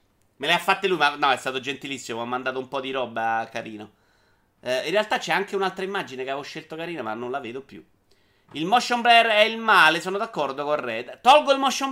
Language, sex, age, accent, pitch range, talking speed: Italian, male, 30-49, native, 125-190 Hz, 235 wpm